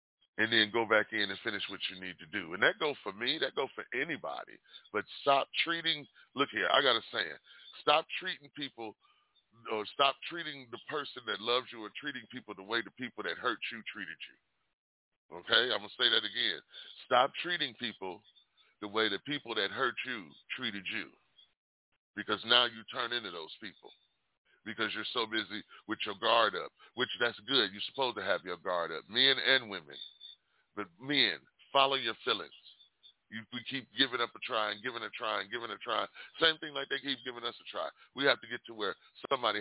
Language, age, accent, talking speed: English, 30-49, American, 205 wpm